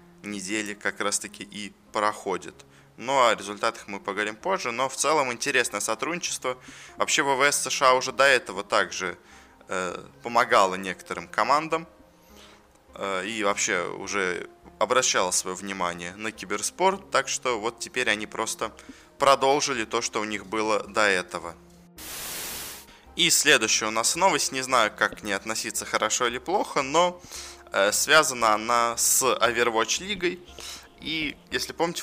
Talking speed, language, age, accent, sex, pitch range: 140 wpm, Russian, 20-39, native, male, 100-135 Hz